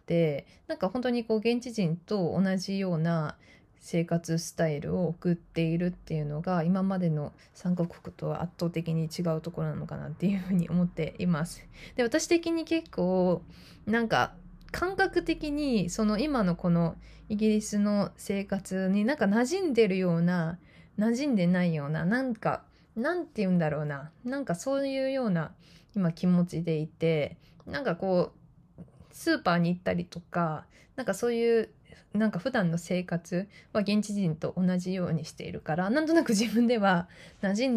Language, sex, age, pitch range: Japanese, female, 20-39, 165-220 Hz